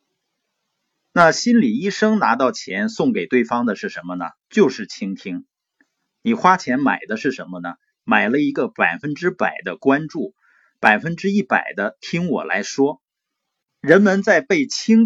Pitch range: 145-235 Hz